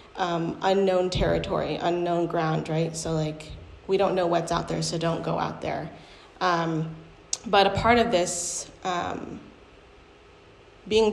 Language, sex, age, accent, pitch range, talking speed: English, female, 30-49, American, 165-195 Hz, 145 wpm